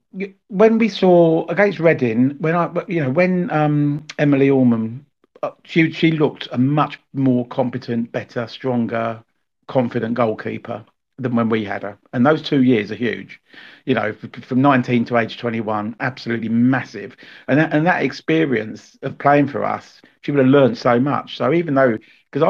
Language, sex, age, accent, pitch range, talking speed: English, male, 50-69, British, 115-145 Hz, 170 wpm